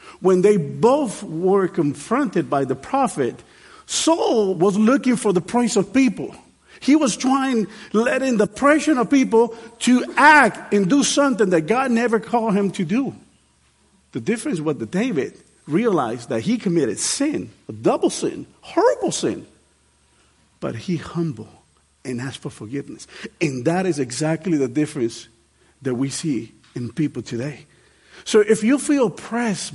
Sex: male